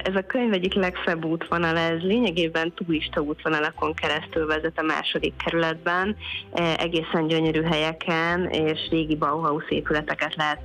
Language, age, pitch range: Hungarian, 20-39, 150-165 Hz